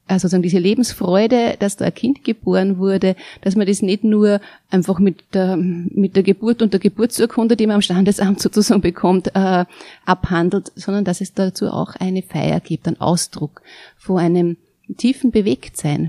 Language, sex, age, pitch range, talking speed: German, female, 30-49, 175-205 Hz, 165 wpm